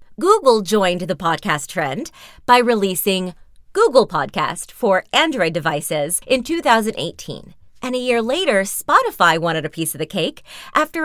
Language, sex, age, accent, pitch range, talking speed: English, female, 30-49, American, 180-260 Hz, 140 wpm